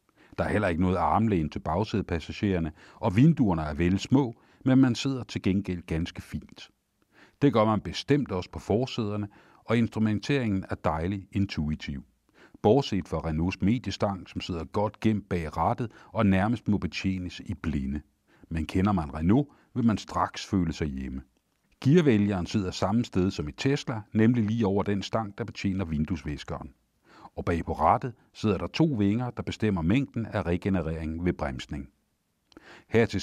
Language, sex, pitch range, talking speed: Danish, male, 85-110 Hz, 160 wpm